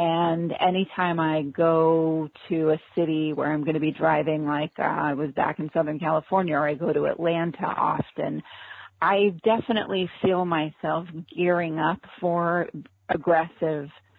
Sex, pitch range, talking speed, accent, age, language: female, 155-185 Hz, 150 wpm, American, 40-59, English